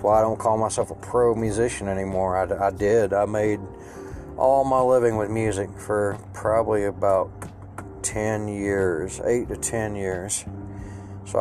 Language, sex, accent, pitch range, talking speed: English, male, American, 95-110 Hz, 155 wpm